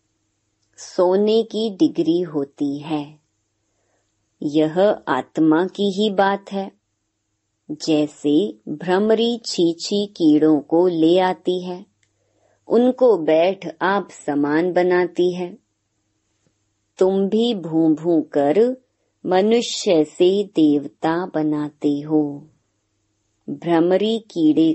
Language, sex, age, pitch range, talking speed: Hindi, male, 30-49, 145-190 Hz, 90 wpm